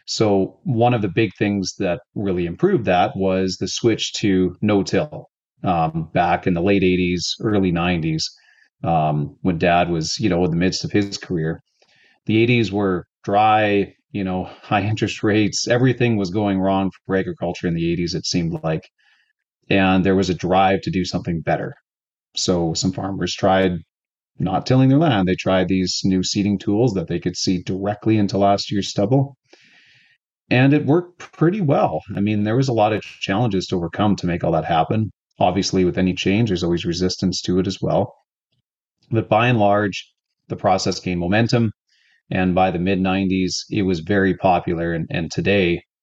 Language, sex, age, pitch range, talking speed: English, male, 30-49, 90-105 Hz, 180 wpm